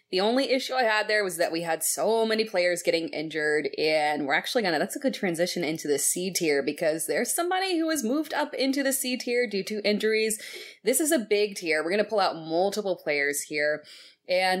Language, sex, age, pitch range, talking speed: English, female, 20-39, 160-245 Hz, 230 wpm